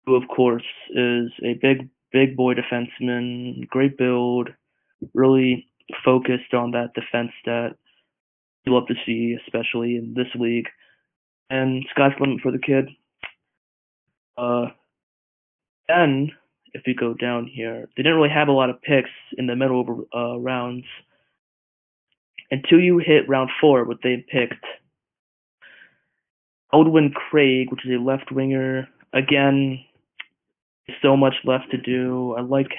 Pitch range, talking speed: 120-135 Hz, 135 wpm